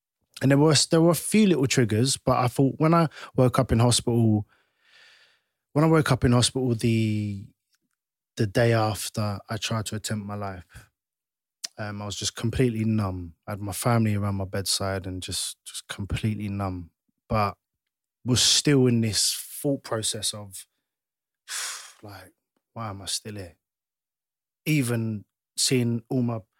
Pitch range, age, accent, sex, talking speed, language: 100-120 Hz, 20-39, British, male, 160 wpm, English